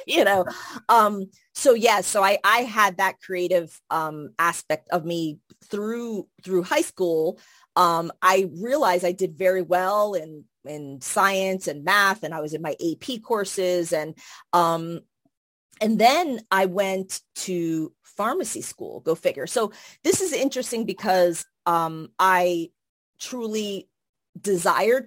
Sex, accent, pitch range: female, American, 170-210 Hz